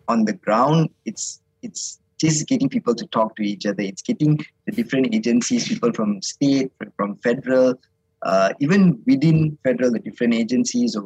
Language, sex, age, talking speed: English, male, 20-39, 170 wpm